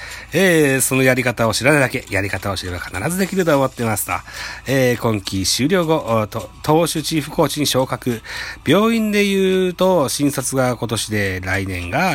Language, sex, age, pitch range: Japanese, male, 40-59, 100-135 Hz